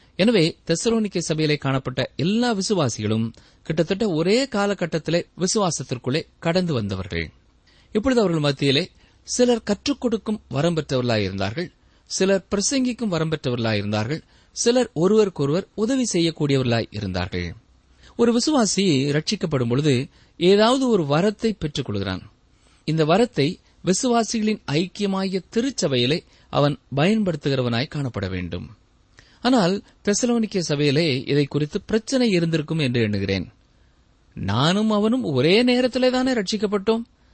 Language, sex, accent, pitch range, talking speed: Tamil, male, native, 140-230 Hz, 75 wpm